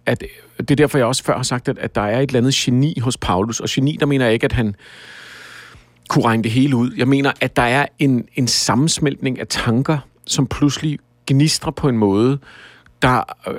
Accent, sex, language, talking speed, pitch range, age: native, male, Danish, 215 wpm, 110-140 Hz, 50-69